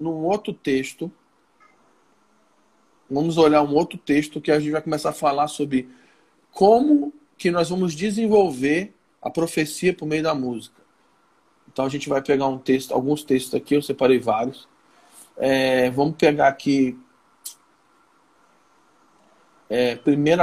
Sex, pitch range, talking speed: male, 140-175 Hz, 130 wpm